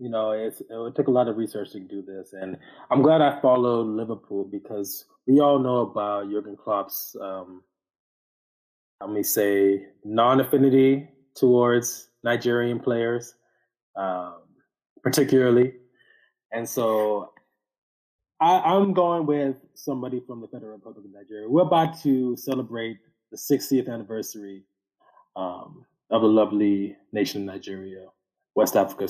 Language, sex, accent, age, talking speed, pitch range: English, male, American, 20-39, 130 wpm, 105-135 Hz